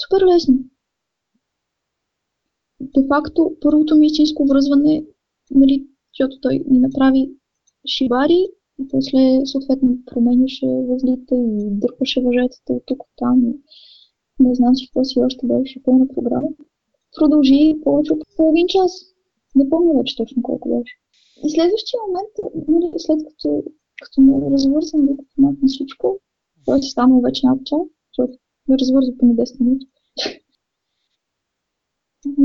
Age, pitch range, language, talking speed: 20-39, 255-305 Hz, Bulgarian, 125 wpm